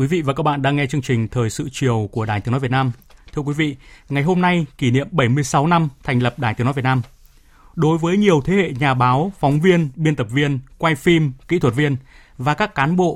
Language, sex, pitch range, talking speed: Vietnamese, male, 125-165 Hz, 255 wpm